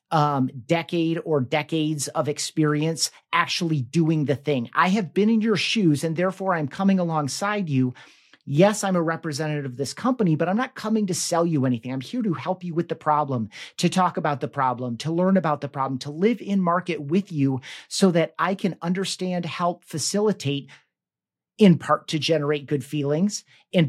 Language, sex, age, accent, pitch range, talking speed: English, male, 40-59, American, 145-175 Hz, 190 wpm